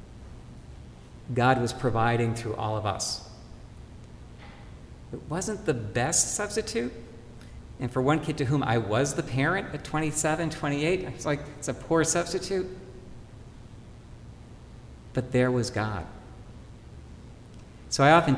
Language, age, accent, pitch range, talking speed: English, 50-69, American, 110-140 Hz, 125 wpm